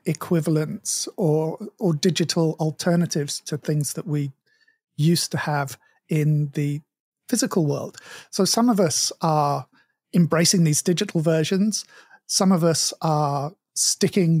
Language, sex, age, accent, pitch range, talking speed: English, male, 50-69, British, 155-190 Hz, 125 wpm